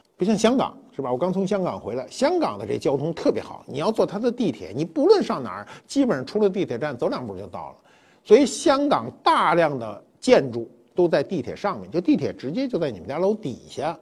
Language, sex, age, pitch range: Chinese, male, 50-69, 130-190 Hz